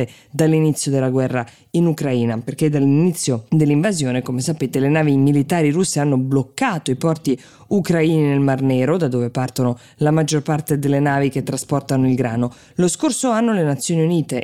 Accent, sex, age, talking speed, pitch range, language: native, female, 20-39, 165 wpm, 130-160 Hz, Italian